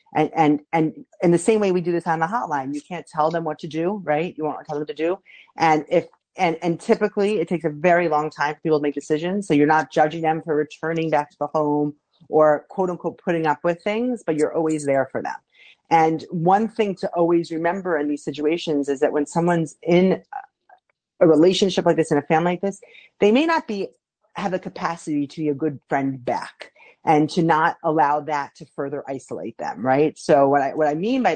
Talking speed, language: 230 wpm, English